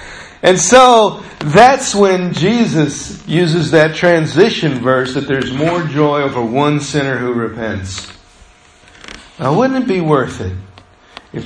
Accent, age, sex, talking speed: American, 50-69, male, 130 wpm